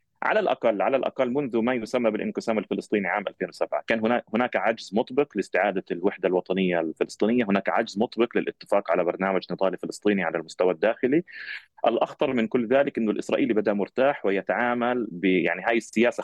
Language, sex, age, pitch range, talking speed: Arabic, male, 30-49, 100-120 Hz, 160 wpm